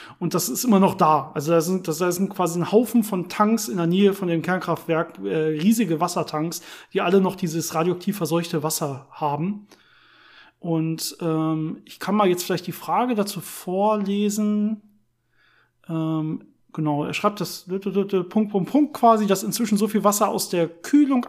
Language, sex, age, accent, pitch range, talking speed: German, male, 40-59, German, 165-205 Hz, 170 wpm